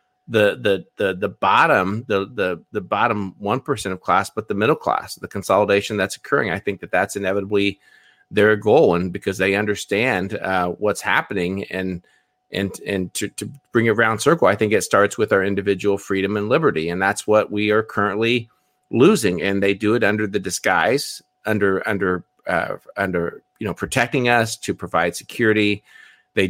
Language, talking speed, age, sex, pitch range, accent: English, 180 wpm, 30-49, male, 95-115 Hz, American